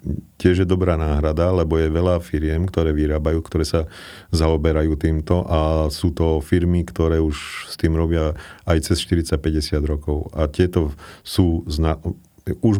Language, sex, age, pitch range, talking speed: Slovak, male, 40-59, 80-95 Hz, 150 wpm